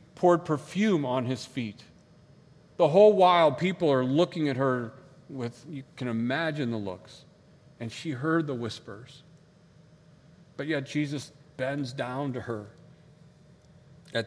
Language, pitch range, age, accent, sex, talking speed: English, 115-155 Hz, 40-59, American, male, 135 wpm